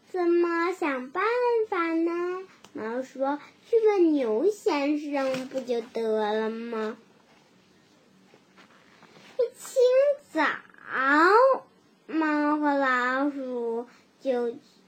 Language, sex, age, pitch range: Chinese, male, 10-29, 260-375 Hz